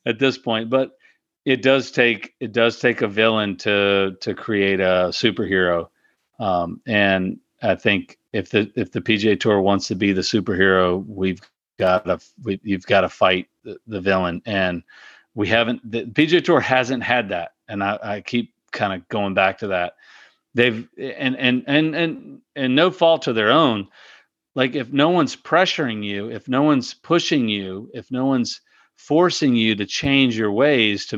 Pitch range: 100-130 Hz